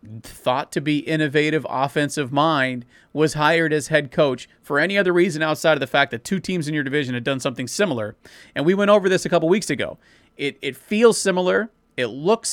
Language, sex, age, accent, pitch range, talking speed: English, male, 30-49, American, 145-180 Hz, 210 wpm